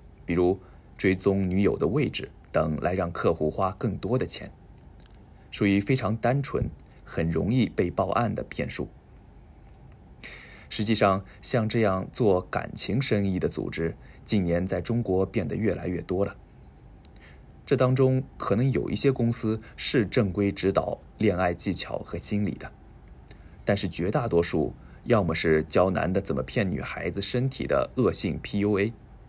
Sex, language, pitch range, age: male, Japanese, 85-110 Hz, 20-39